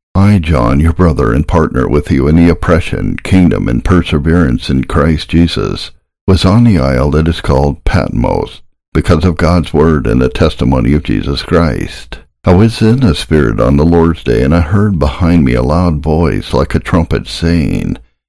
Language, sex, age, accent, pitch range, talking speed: English, male, 60-79, American, 70-90 Hz, 185 wpm